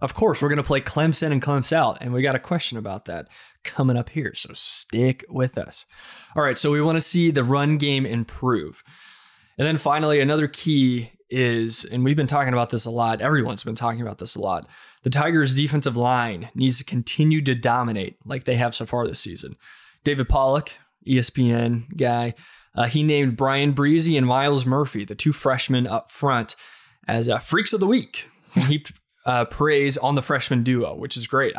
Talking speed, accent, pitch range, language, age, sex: 200 wpm, American, 120-150 Hz, English, 20-39, male